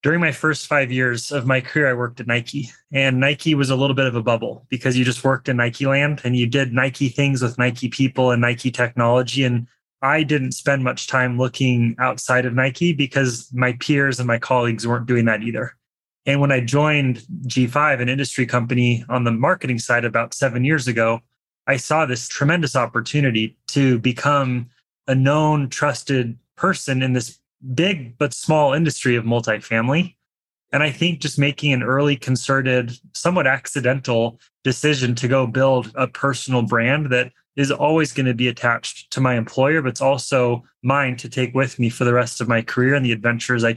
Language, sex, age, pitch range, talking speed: English, male, 20-39, 120-140 Hz, 190 wpm